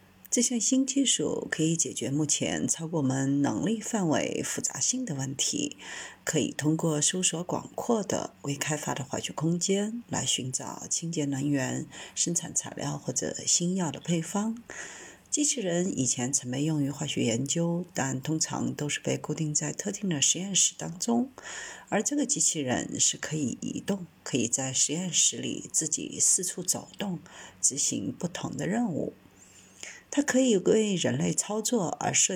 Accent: native